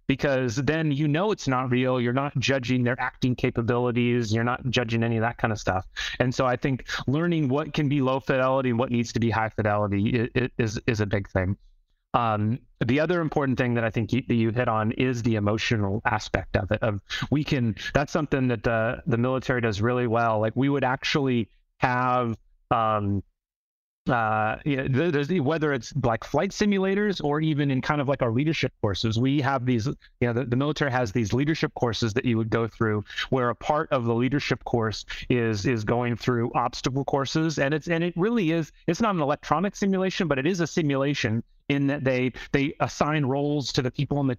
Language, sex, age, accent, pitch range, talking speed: English, male, 30-49, American, 120-145 Hz, 215 wpm